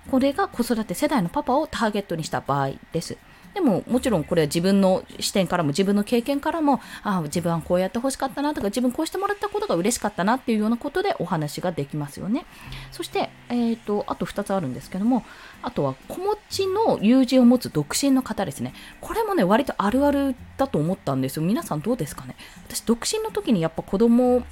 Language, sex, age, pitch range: Japanese, female, 20-39, 185-300 Hz